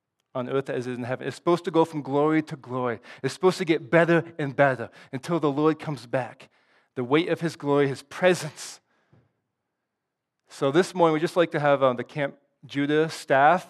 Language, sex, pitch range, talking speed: English, male, 140-170 Hz, 205 wpm